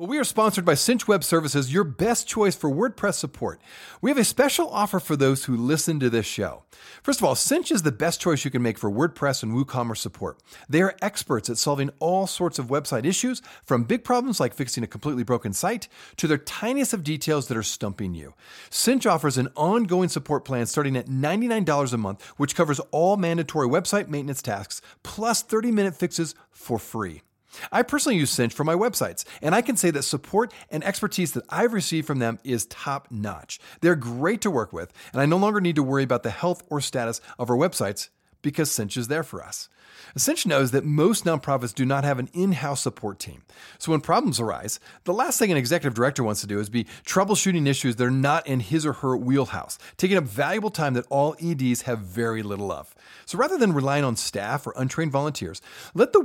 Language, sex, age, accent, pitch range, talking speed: English, male, 40-59, American, 125-190 Hz, 215 wpm